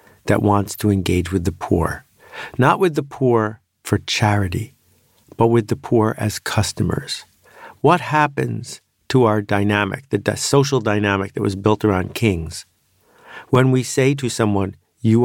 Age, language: 50-69, English